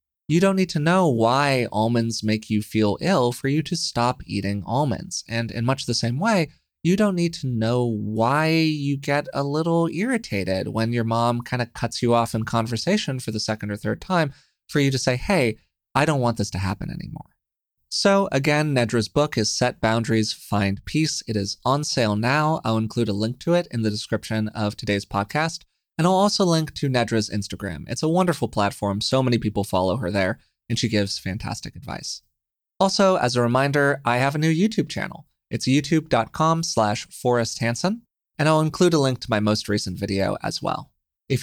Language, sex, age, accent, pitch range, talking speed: English, male, 20-39, American, 110-150 Hz, 195 wpm